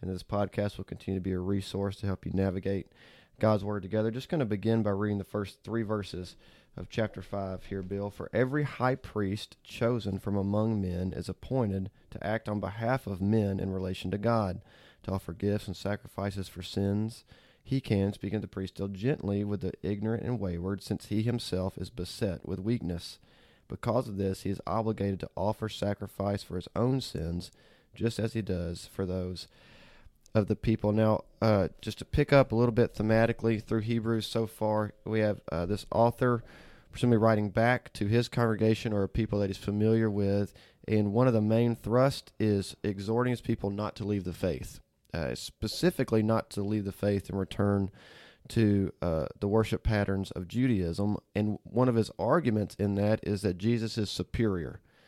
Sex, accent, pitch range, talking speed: male, American, 95-115 Hz, 190 wpm